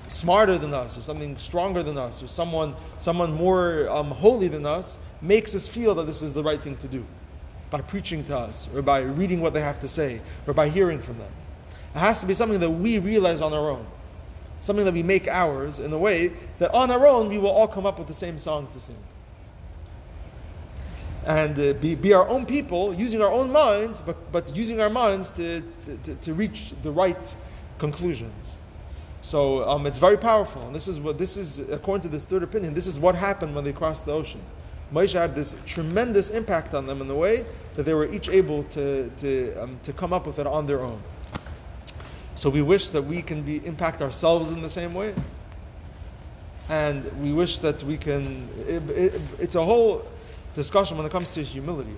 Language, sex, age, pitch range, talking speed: English, male, 30-49, 130-180 Hz, 210 wpm